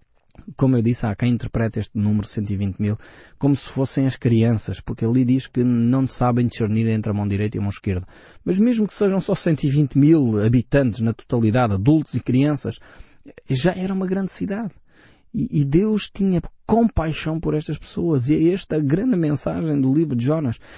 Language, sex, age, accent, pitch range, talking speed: Portuguese, male, 20-39, Portuguese, 115-160 Hz, 180 wpm